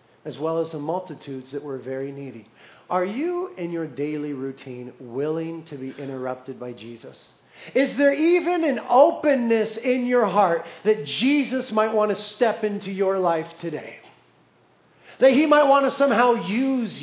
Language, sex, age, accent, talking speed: English, male, 40-59, American, 160 wpm